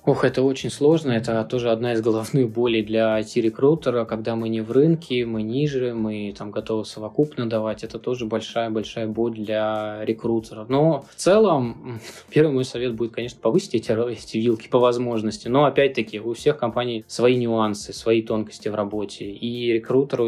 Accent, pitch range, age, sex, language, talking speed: native, 115-130 Hz, 20-39, male, Russian, 170 wpm